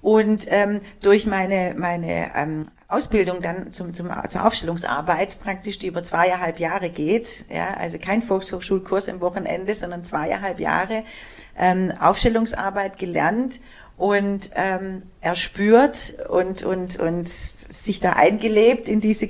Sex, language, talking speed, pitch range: female, German, 125 wpm, 170-200 Hz